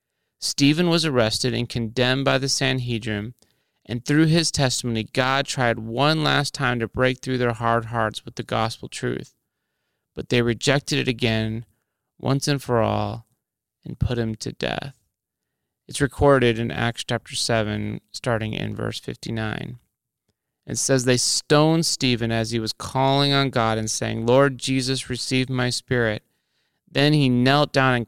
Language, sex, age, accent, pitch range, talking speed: English, male, 30-49, American, 115-140 Hz, 160 wpm